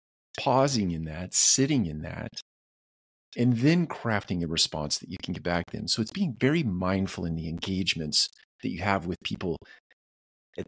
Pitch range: 90-125 Hz